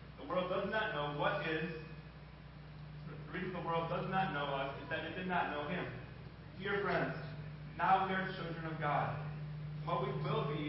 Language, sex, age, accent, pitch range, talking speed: English, male, 30-49, American, 150-165 Hz, 185 wpm